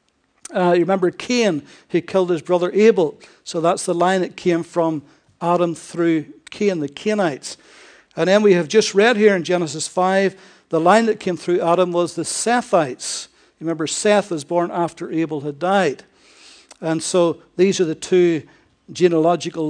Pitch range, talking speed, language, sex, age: 160-195 Hz, 170 wpm, English, male, 60-79